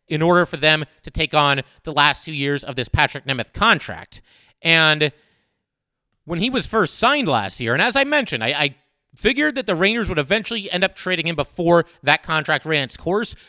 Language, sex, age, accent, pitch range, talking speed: English, male, 30-49, American, 145-185 Hz, 205 wpm